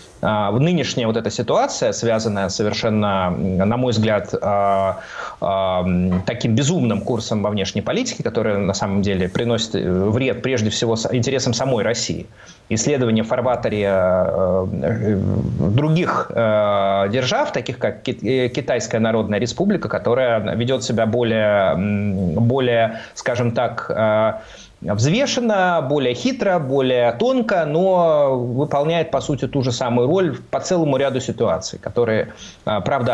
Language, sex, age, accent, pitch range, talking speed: Russian, male, 20-39, native, 110-145 Hz, 110 wpm